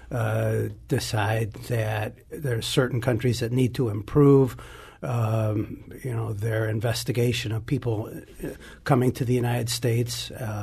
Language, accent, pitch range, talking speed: English, American, 115-135 Hz, 130 wpm